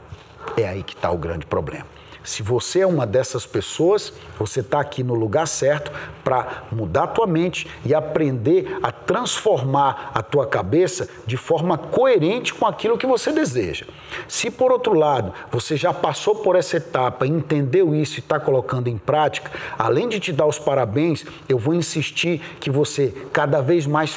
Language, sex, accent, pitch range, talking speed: Portuguese, male, Brazilian, 130-170 Hz, 175 wpm